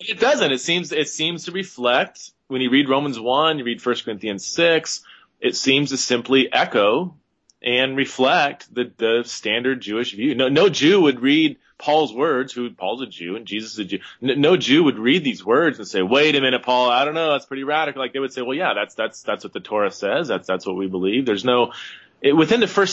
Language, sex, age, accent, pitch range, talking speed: English, male, 30-49, American, 110-145 Hz, 230 wpm